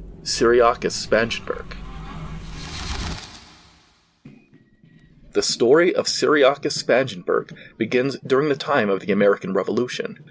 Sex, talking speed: male, 85 wpm